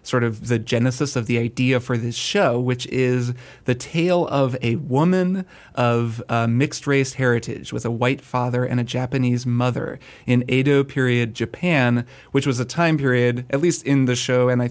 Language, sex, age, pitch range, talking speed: English, male, 30-49, 120-135 Hz, 190 wpm